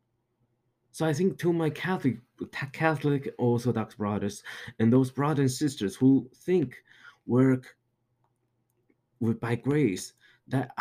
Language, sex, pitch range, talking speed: English, male, 110-130 Hz, 115 wpm